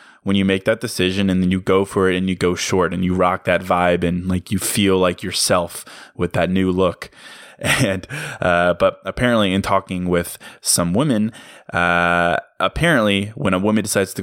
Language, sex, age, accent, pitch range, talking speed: English, male, 20-39, American, 90-100 Hz, 195 wpm